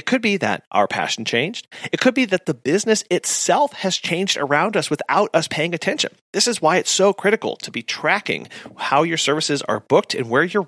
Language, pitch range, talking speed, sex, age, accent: English, 120-180 Hz, 220 wpm, male, 30-49, American